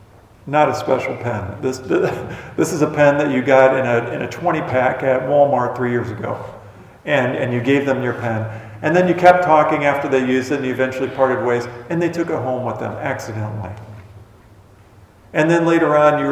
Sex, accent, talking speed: male, American, 205 wpm